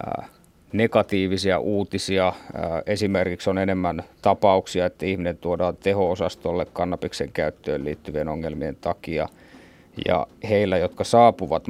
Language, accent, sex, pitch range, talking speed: Finnish, native, male, 85-100 Hz, 105 wpm